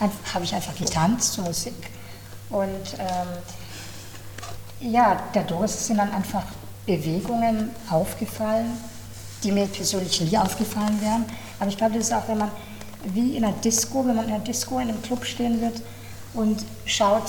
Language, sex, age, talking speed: German, female, 60-79, 160 wpm